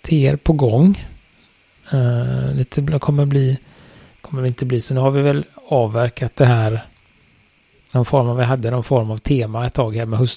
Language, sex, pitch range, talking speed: Swedish, male, 110-130 Hz, 190 wpm